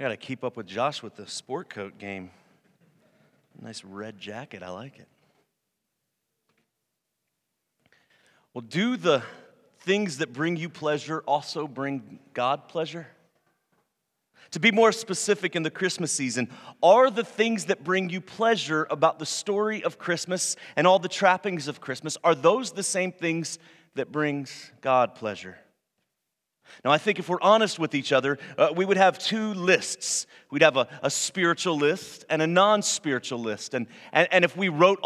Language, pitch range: English, 150-195 Hz